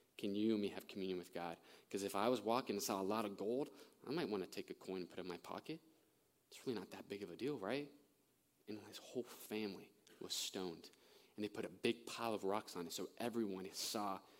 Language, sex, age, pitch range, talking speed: English, male, 20-39, 100-130 Hz, 240 wpm